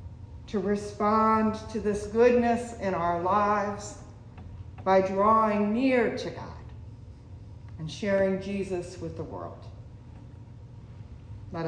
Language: English